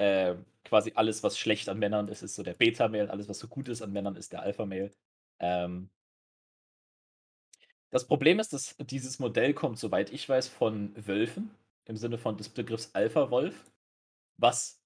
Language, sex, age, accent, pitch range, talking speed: German, male, 30-49, German, 110-155 Hz, 170 wpm